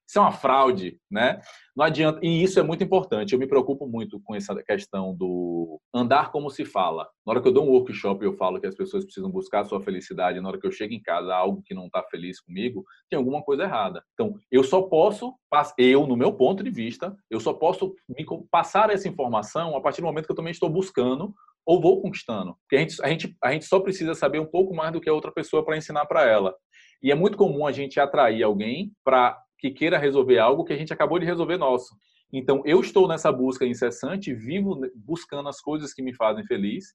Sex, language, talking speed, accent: male, Portuguese, 235 wpm, Brazilian